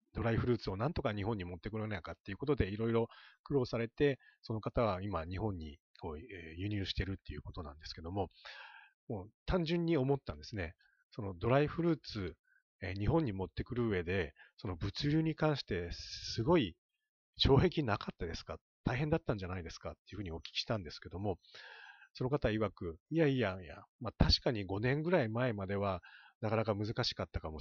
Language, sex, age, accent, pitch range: Japanese, male, 40-59, native, 95-135 Hz